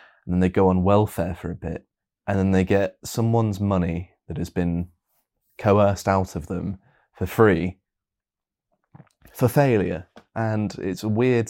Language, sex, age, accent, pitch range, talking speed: English, male, 20-39, British, 90-100 Hz, 155 wpm